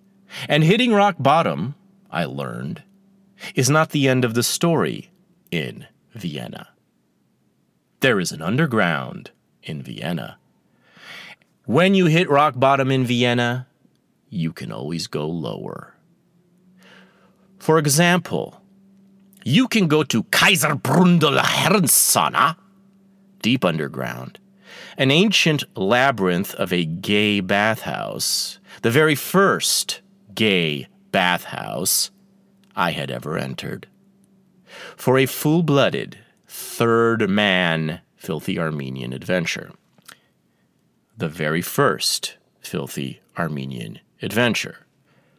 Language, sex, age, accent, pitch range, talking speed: English, male, 30-49, American, 130-195 Hz, 95 wpm